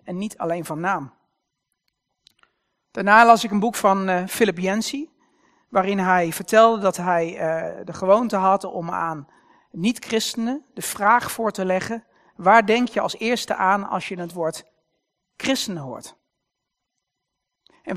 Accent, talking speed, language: Dutch, 145 wpm, Dutch